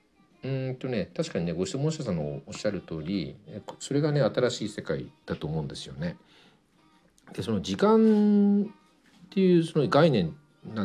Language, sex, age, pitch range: Japanese, male, 50-69, 120-175 Hz